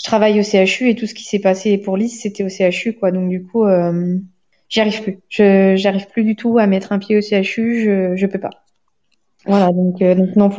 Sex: female